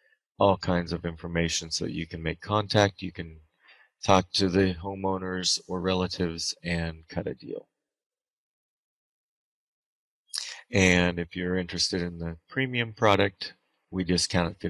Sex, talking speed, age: male, 125 wpm, 30-49